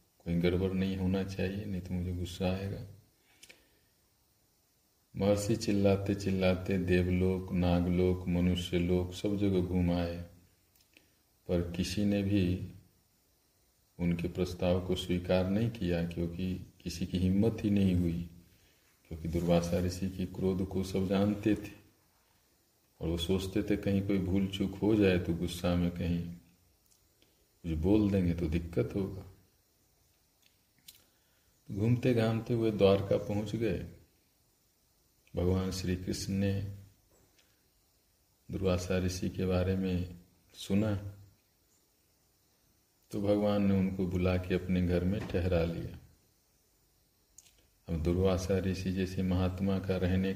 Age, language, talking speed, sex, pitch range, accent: 50-69, Hindi, 120 wpm, male, 90-100 Hz, native